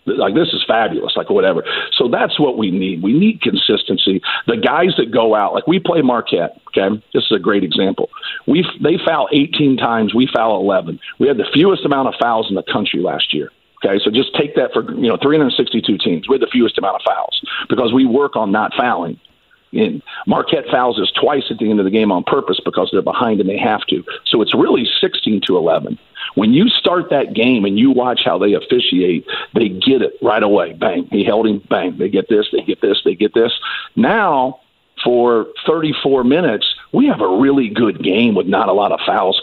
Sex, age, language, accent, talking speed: male, 50-69, English, American, 220 wpm